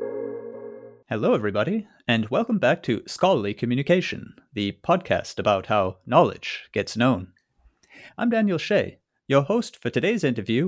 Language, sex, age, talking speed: English, male, 30-49, 130 wpm